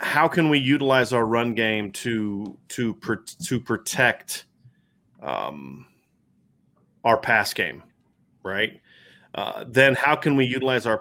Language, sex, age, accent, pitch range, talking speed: English, male, 30-49, American, 105-125 Hz, 130 wpm